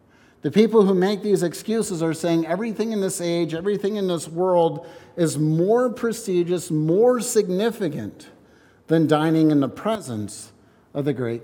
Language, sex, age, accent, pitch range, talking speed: English, male, 50-69, American, 130-185 Hz, 150 wpm